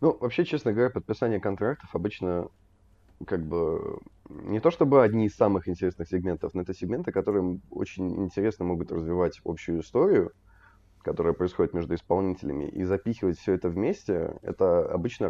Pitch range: 85-95 Hz